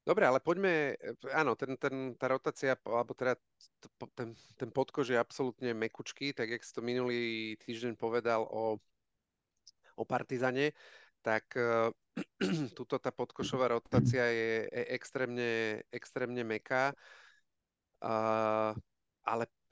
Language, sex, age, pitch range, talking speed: Slovak, male, 40-59, 115-135 Hz, 120 wpm